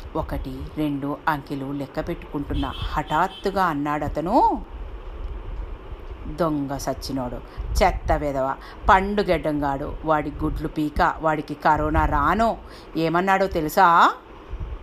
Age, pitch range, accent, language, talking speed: 50-69, 150-225 Hz, native, Telugu, 80 wpm